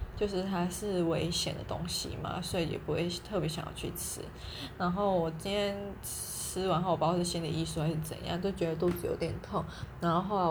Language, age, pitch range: Chinese, 20-39, 165-185 Hz